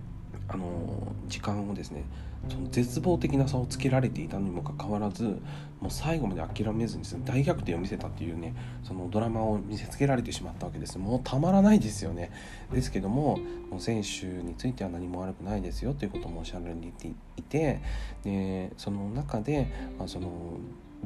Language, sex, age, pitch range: Japanese, male, 40-59, 90-130 Hz